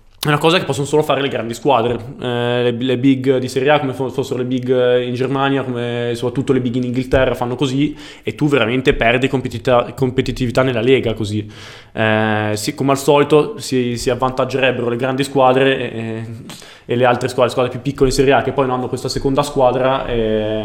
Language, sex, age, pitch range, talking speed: Italian, male, 20-39, 120-140 Hz, 205 wpm